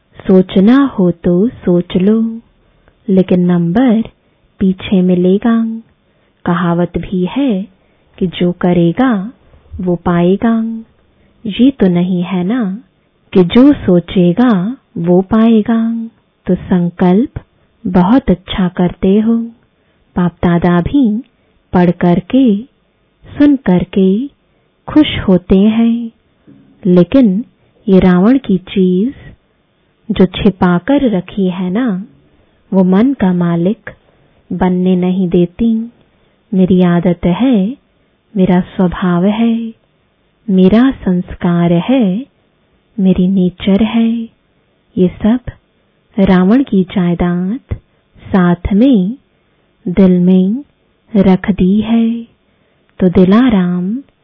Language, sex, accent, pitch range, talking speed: English, female, Indian, 180-230 Hz, 95 wpm